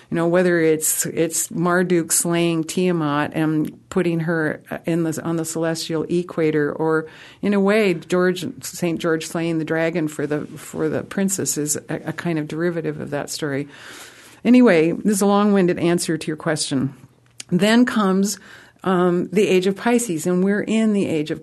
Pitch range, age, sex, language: 160-195 Hz, 50-69, female, English